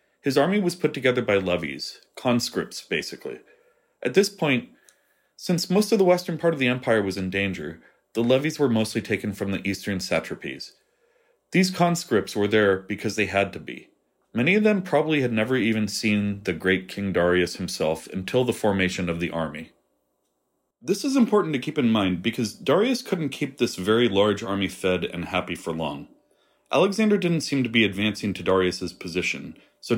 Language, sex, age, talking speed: English, male, 30-49, 180 wpm